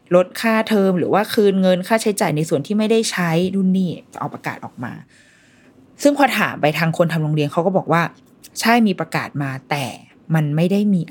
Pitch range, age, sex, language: 155-210 Hz, 20-39, female, Thai